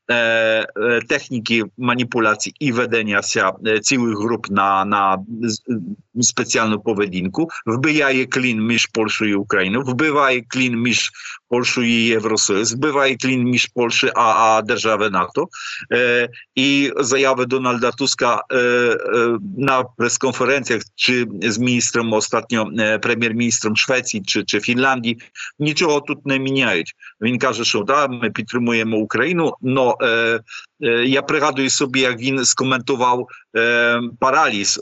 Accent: Polish